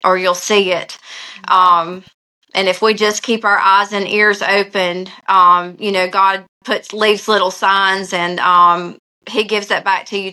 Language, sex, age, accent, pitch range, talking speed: English, female, 20-39, American, 180-200 Hz, 180 wpm